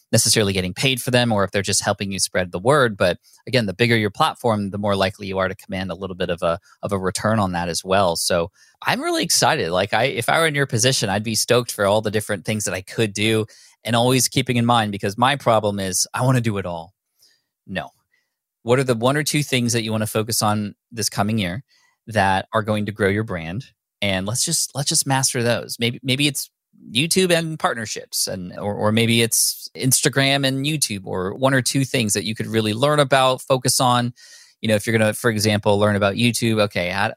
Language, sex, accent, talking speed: English, male, American, 240 wpm